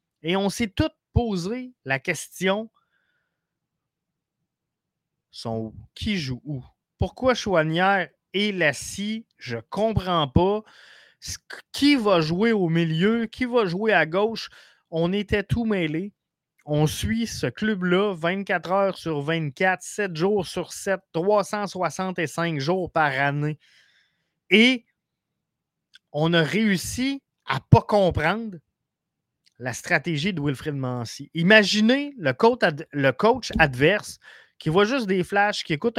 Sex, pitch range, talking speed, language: male, 150-210 Hz, 125 wpm, French